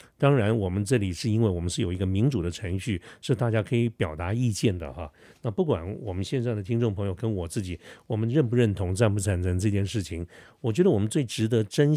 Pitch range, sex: 95-125 Hz, male